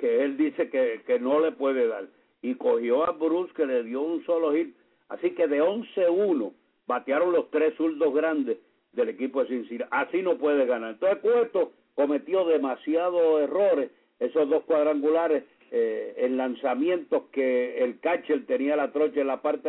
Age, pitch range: 60-79, 140-175 Hz